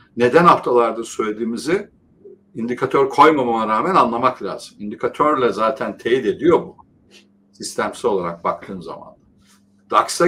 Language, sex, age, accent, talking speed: Turkish, male, 60-79, native, 105 wpm